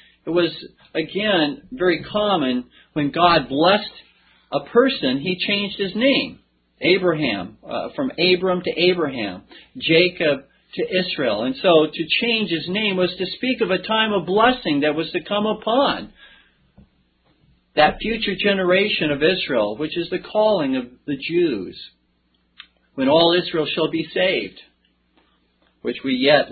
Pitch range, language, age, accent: 130-195 Hz, English, 50-69, American